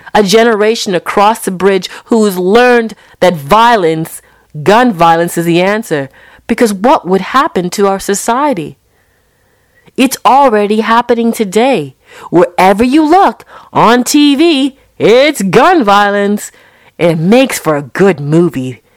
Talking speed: 125 wpm